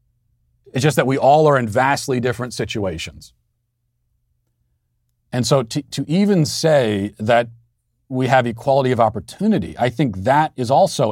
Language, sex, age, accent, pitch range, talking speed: English, male, 40-59, American, 110-140 Hz, 145 wpm